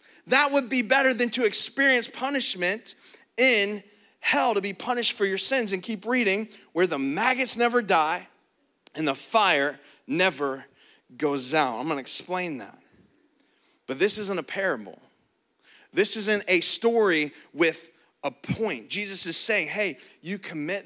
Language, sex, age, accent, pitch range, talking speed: English, male, 30-49, American, 155-210 Hz, 150 wpm